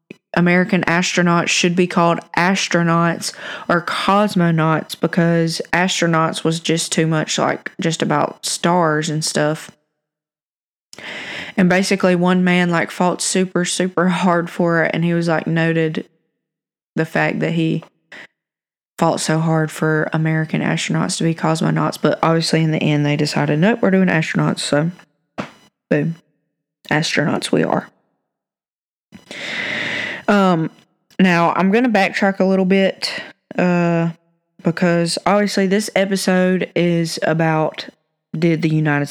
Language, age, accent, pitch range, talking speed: English, 20-39, American, 160-180 Hz, 130 wpm